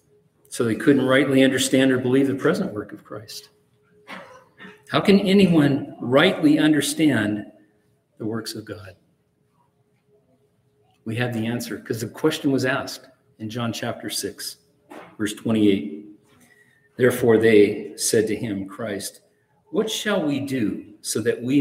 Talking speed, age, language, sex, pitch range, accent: 135 wpm, 50-69, English, male, 110-140 Hz, American